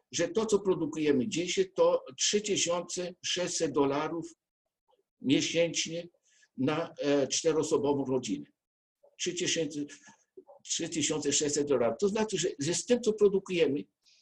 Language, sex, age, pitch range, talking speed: Polish, male, 60-79, 145-220 Hz, 90 wpm